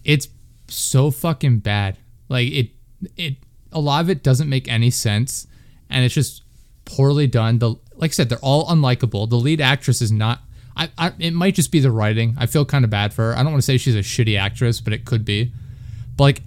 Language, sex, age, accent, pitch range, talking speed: English, male, 20-39, American, 110-135 Hz, 225 wpm